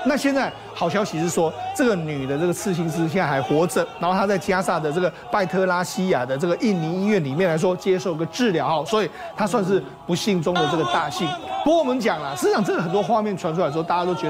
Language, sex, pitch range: Chinese, male, 175-220 Hz